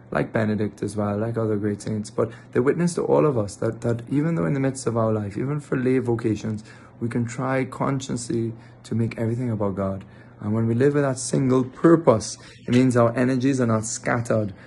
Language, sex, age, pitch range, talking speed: English, male, 30-49, 110-125 Hz, 215 wpm